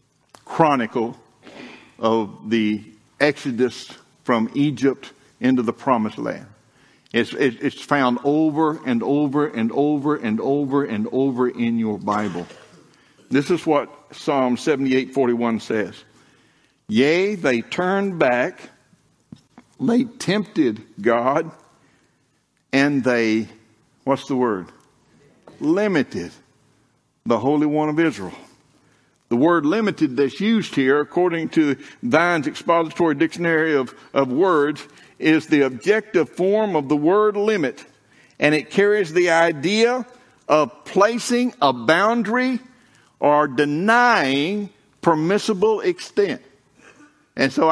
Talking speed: 110 wpm